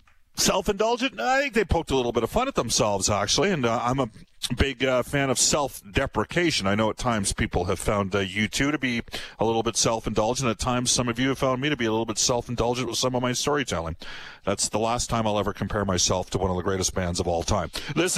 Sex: male